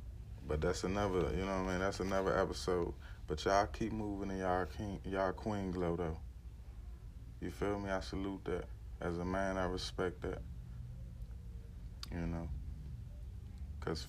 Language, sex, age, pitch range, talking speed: English, male, 20-39, 85-100 Hz, 160 wpm